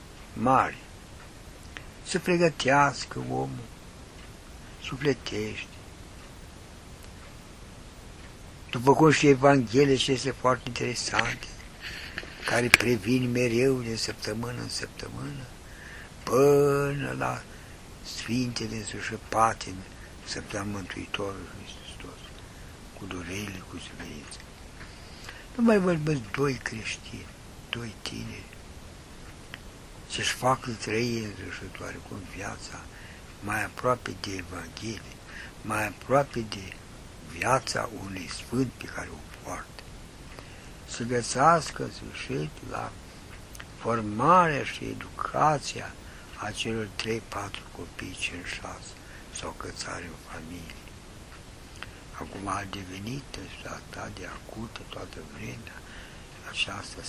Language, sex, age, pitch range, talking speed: Romanian, male, 60-79, 90-120 Hz, 85 wpm